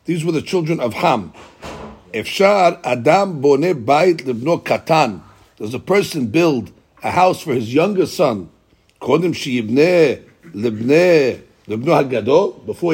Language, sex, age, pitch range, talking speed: English, male, 60-79, 125-175 Hz, 85 wpm